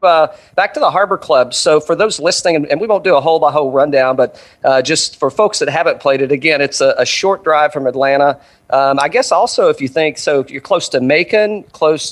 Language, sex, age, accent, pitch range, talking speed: English, male, 40-59, American, 135-170 Hz, 250 wpm